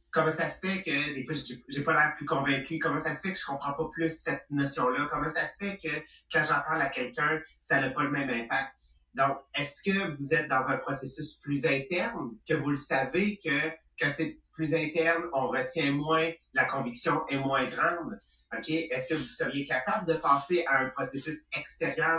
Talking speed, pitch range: 215 wpm, 135-165 Hz